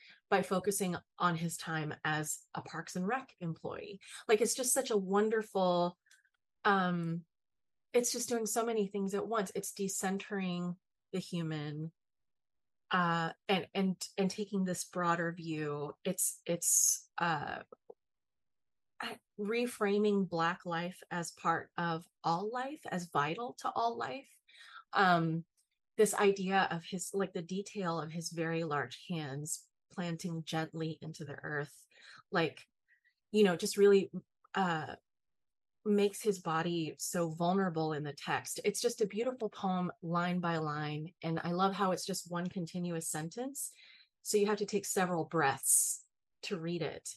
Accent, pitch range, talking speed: American, 165-210 Hz, 145 wpm